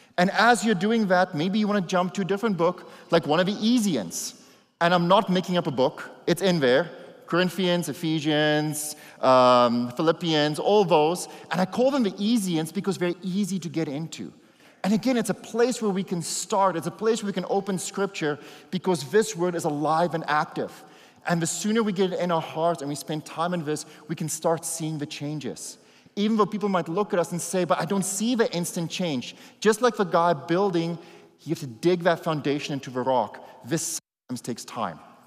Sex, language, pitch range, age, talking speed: male, English, 155-195 Hz, 30-49, 215 wpm